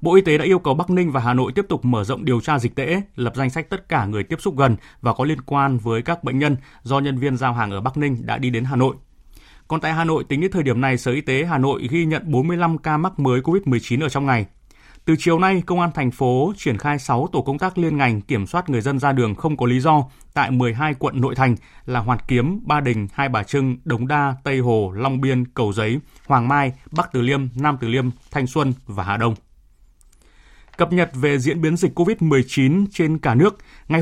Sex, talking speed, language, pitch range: male, 250 wpm, Vietnamese, 125-160 Hz